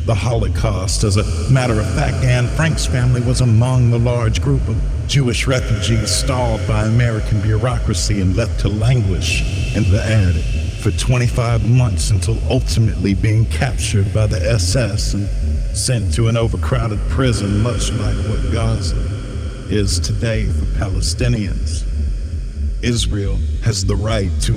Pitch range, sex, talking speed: 100-120 Hz, male, 140 wpm